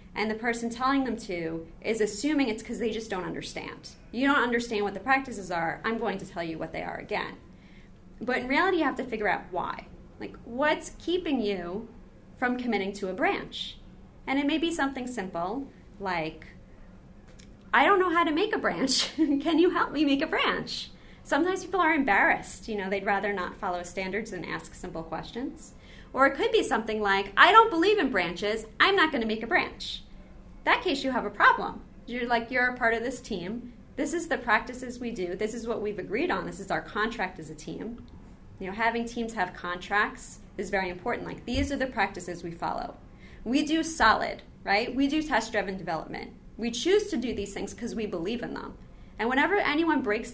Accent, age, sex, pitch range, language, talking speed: American, 30-49, female, 200-275 Hz, English, 205 wpm